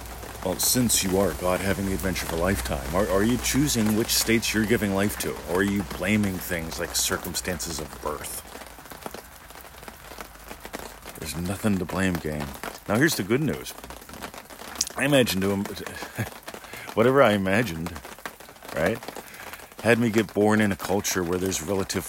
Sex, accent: male, American